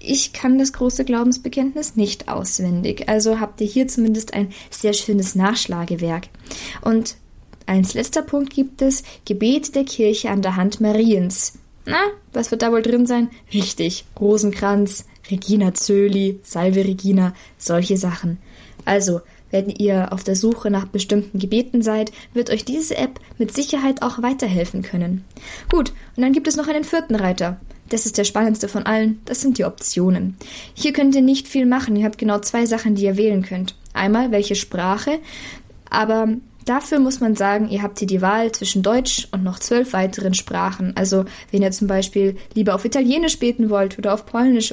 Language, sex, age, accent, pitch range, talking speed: German, female, 20-39, German, 195-250 Hz, 175 wpm